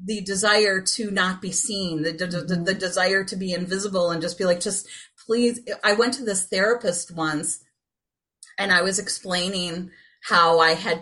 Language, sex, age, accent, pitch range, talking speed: English, female, 30-49, American, 180-260 Hz, 175 wpm